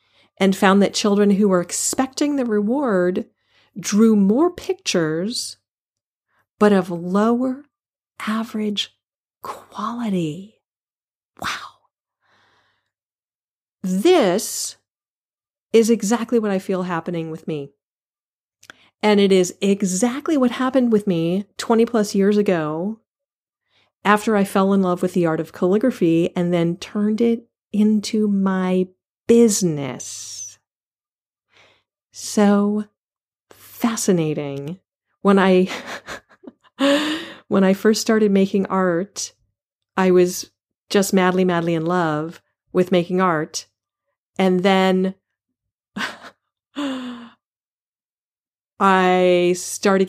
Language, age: English, 40-59